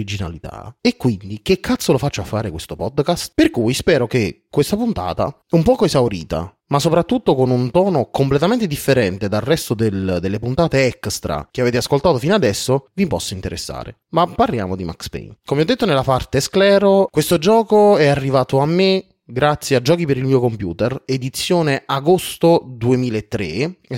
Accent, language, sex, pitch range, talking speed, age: native, Italian, male, 115-165 Hz, 170 wpm, 30-49